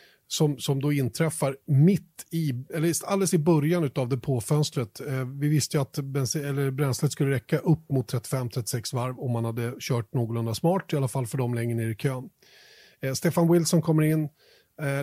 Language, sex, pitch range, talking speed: Swedish, male, 130-155 Hz, 195 wpm